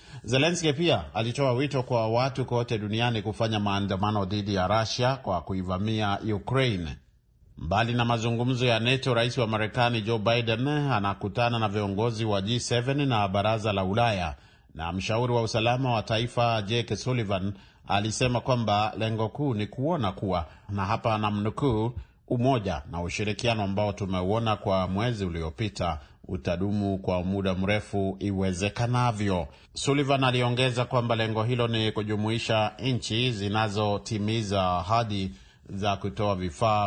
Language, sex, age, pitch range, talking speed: Swahili, male, 40-59, 100-120 Hz, 130 wpm